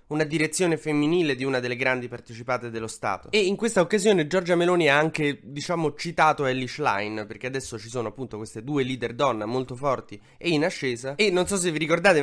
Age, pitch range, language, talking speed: 20-39, 115-150 Hz, Italian, 205 wpm